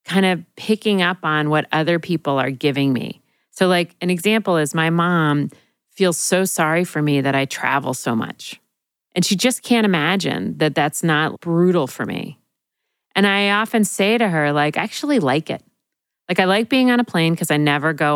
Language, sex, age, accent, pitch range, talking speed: English, female, 40-59, American, 145-180 Hz, 200 wpm